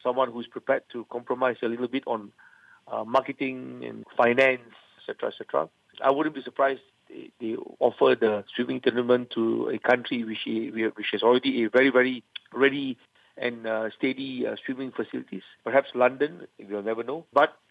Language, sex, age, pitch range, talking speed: English, male, 50-69, 115-135 Hz, 160 wpm